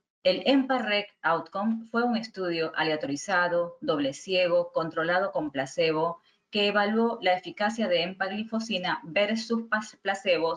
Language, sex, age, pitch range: Spanish, female, 20-39, 170-225 Hz